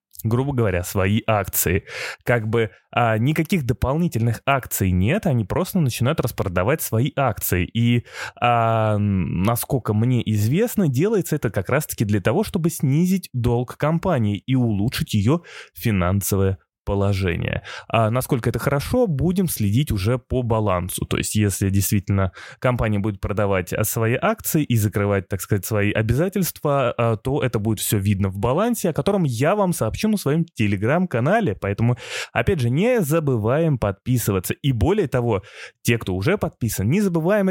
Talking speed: 145 wpm